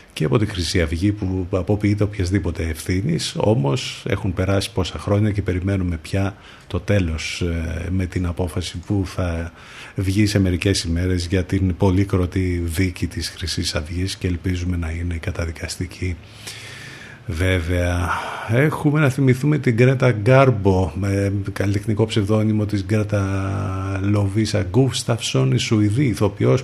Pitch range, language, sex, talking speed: 95-120 Hz, Greek, male, 130 wpm